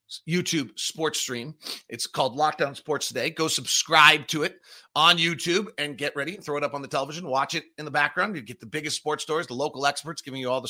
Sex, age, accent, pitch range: male, 30-49, American, 120-155 Hz